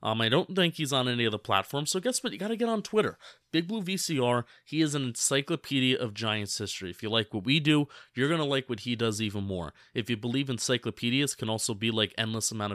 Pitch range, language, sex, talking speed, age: 110-145 Hz, English, male, 235 wpm, 30-49